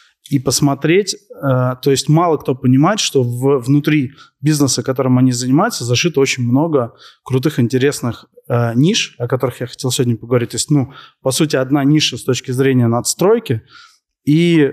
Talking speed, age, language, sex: 150 wpm, 20-39, Russian, male